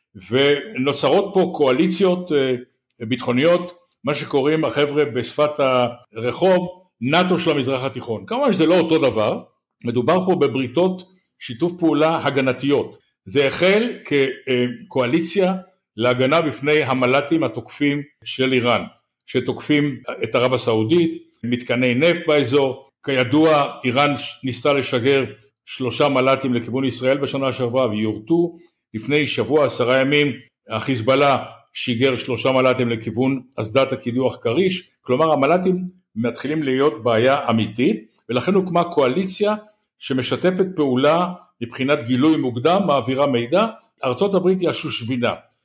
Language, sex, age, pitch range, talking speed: Hebrew, male, 60-79, 130-175 Hz, 110 wpm